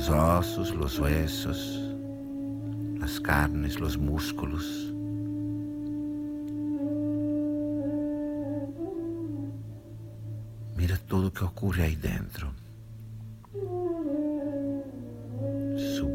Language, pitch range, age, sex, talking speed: Portuguese, 90-135 Hz, 60-79, male, 60 wpm